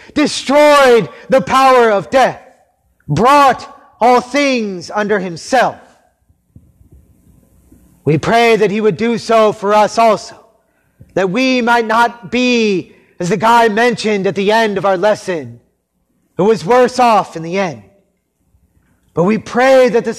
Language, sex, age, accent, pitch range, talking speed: English, male, 30-49, American, 190-245 Hz, 140 wpm